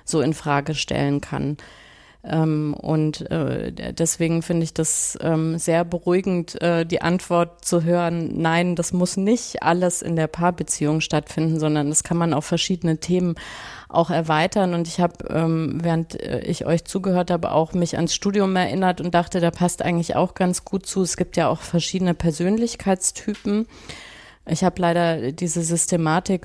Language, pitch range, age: German, 160-180 Hz, 30-49